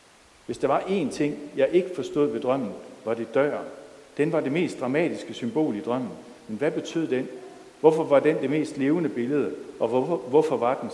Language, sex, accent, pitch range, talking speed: Danish, male, native, 120-155 Hz, 205 wpm